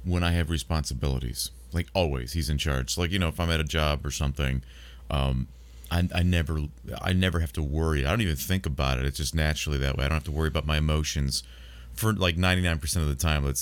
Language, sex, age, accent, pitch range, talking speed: English, male, 30-49, American, 70-90 Hz, 240 wpm